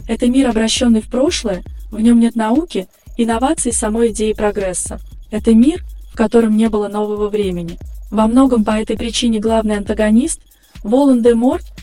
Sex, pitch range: female, 215-245 Hz